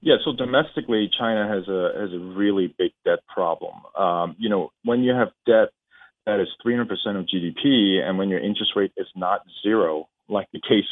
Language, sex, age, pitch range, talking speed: English, male, 40-59, 95-115 Hz, 190 wpm